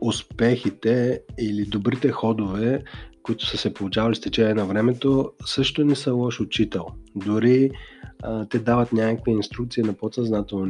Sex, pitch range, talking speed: male, 100-120 Hz, 140 wpm